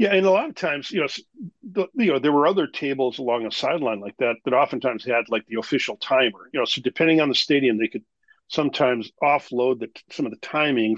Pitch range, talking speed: 115-165 Hz, 235 wpm